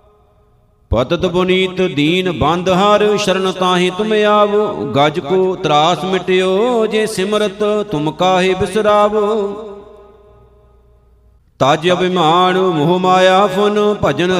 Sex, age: male, 50-69